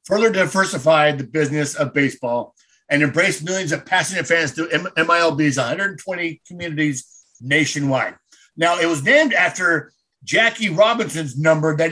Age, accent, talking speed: 50-69, American, 130 wpm